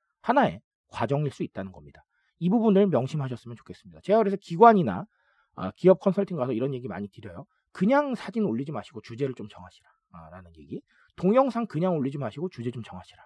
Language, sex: Korean, male